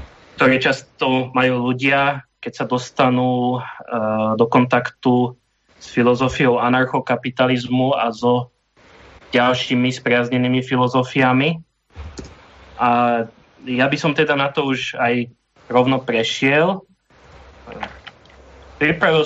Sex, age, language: male, 20-39, Czech